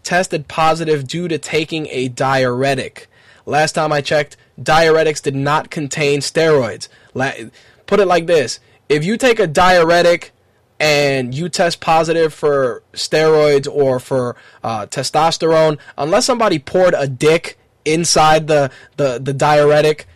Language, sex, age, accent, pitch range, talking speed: English, male, 20-39, American, 140-170 Hz, 135 wpm